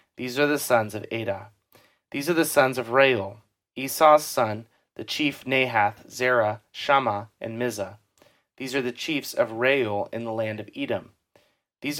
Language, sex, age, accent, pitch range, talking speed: English, male, 30-49, American, 110-145 Hz, 165 wpm